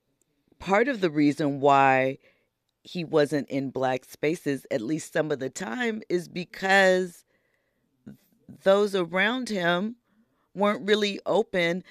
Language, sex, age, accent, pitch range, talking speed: English, female, 40-59, American, 140-195 Hz, 120 wpm